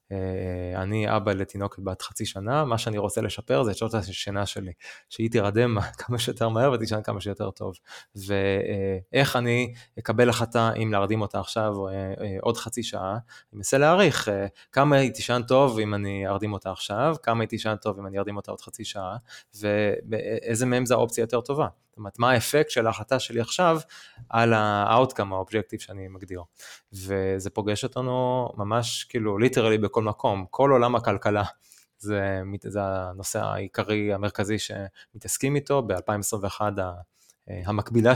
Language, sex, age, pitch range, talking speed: Hebrew, male, 20-39, 95-115 Hz, 165 wpm